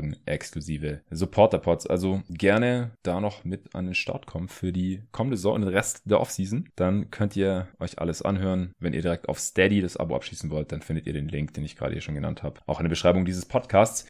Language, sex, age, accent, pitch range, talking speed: German, male, 20-39, German, 90-115 Hz, 225 wpm